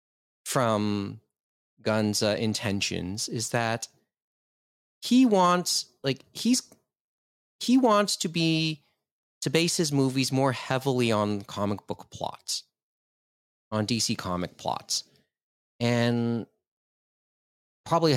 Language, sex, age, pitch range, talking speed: English, male, 30-49, 100-130 Hz, 100 wpm